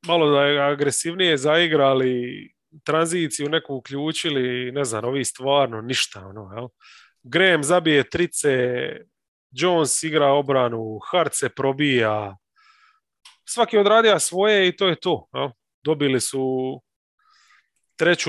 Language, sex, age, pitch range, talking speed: English, male, 30-49, 130-175 Hz, 110 wpm